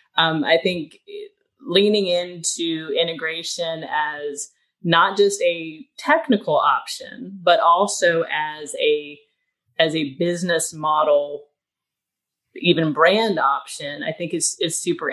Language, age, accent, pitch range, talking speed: English, 30-49, American, 160-230 Hz, 110 wpm